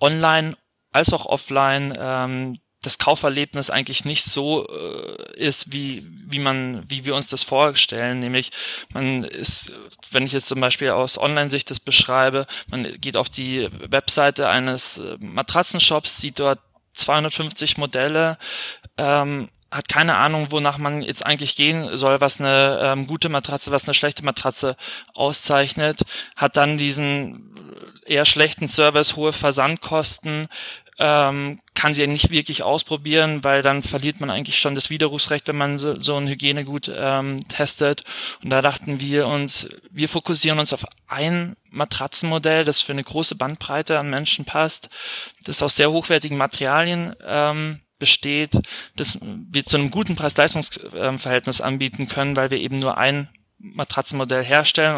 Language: German